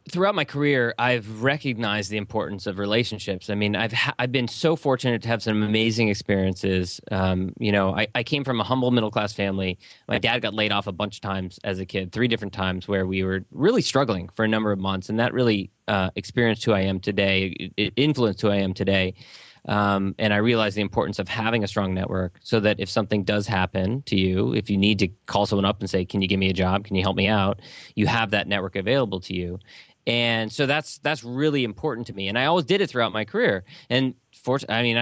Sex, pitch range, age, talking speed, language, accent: male, 100-120 Hz, 30-49, 240 wpm, English, American